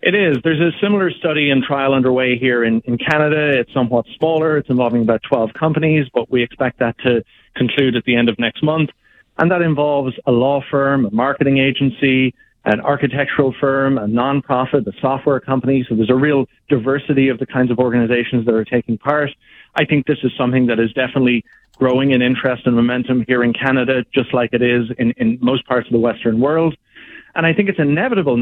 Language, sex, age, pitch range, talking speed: English, male, 40-59, 120-140 Hz, 205 wpm